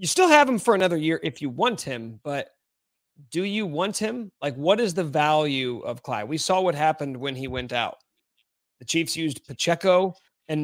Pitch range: 130-180 Hz